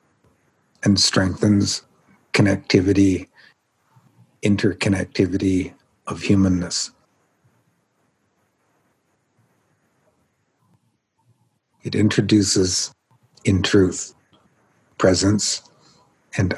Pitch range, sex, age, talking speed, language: 95-100 Hz, male, 60-79, 45 wpm, English